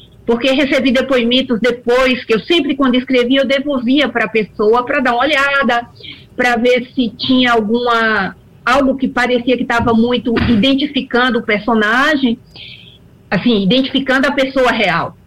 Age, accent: 40-59, Brazilian